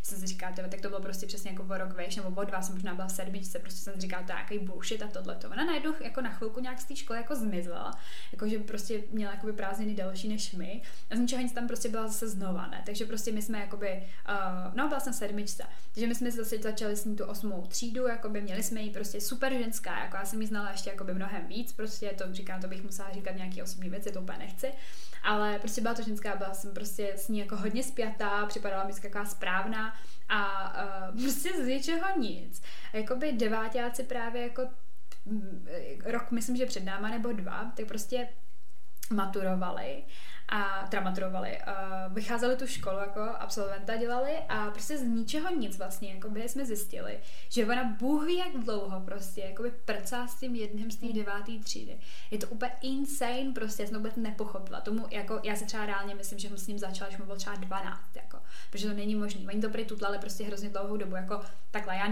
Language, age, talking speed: Czech, 20-39, 210 wpm